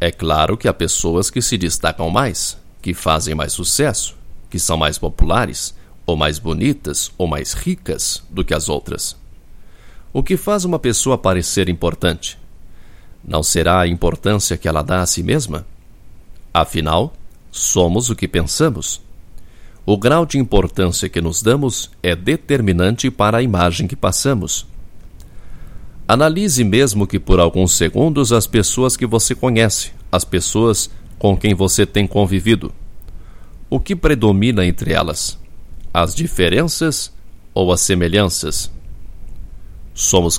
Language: Portuguese